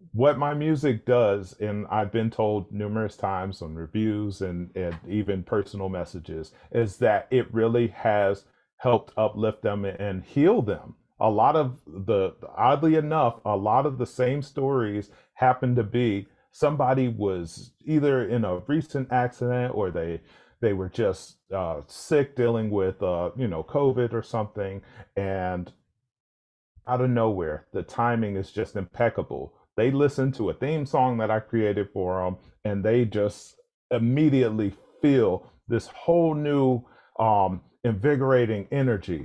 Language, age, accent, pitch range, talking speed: English, 40-59, American, 100-125 Hz, 145 wpm